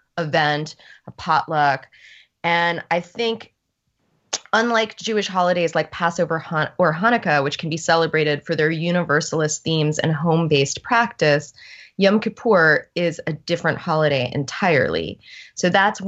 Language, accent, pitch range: English, American, 155-195 Hz